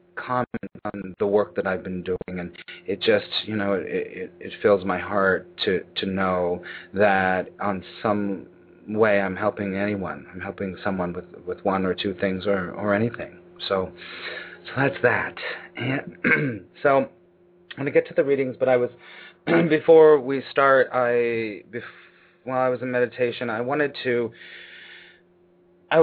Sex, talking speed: male, 160 wpm